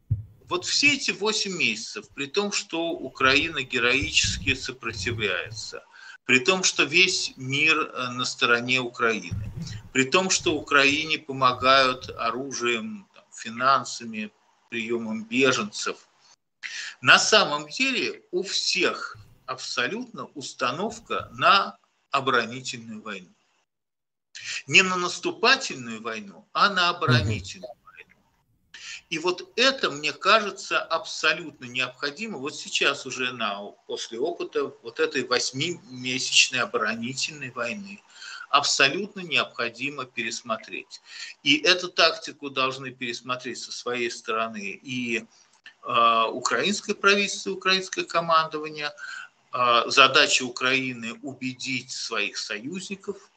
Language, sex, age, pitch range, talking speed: Russian, male, 50-69, 125-195 Hz, 95 wpm